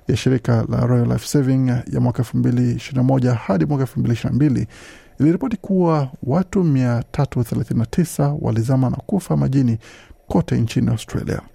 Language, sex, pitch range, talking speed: Swahili, male, 120-150 Hz, 110 wpm